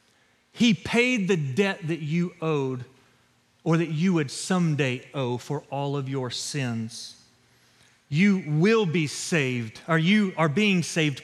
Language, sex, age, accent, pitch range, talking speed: English, male, 40-59, American, 150-215 Hz, 145 wpm